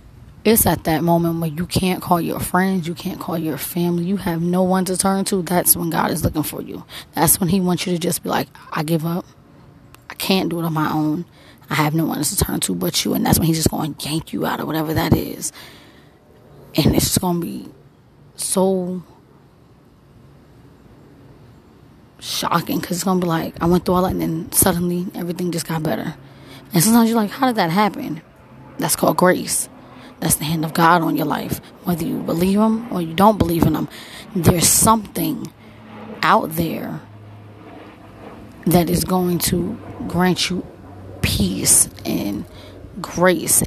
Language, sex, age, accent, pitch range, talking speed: English, female, 20-39, American, 155-185 Hz, 190 wpm